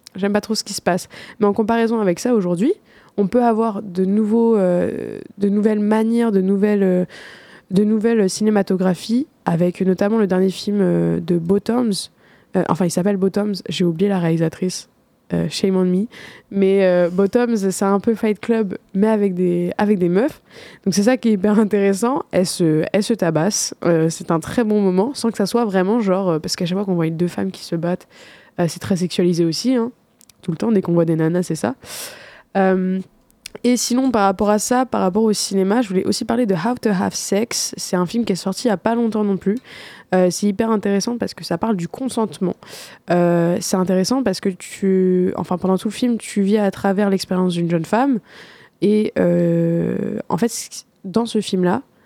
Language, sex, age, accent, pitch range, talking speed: French, female, 20-39, French, 180-225 Hz, 210 wpm